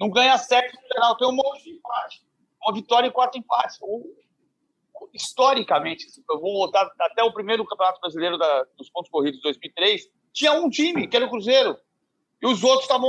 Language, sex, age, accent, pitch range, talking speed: Portuguese, male, 40-59, Brazilian, 195-260 Hz, 195 wpm